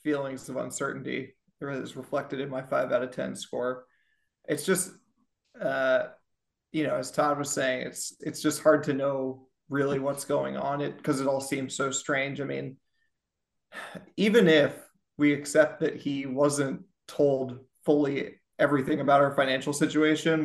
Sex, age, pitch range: male, 30-49, 140-160 Hz